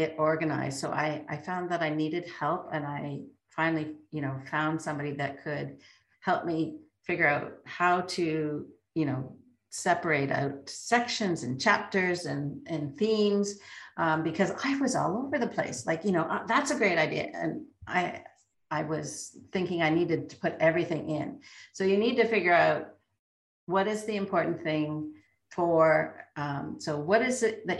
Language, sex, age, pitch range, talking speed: English, female, 50-69, 145-180 Hz, 170 wpm